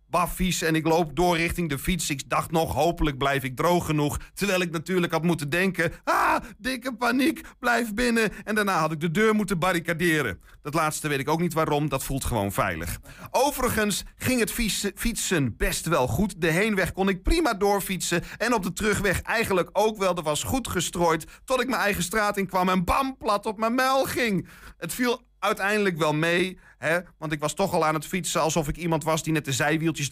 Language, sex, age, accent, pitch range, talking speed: Dutch, male, 40-59, Dutch, 155-205 Hz, 210 wpm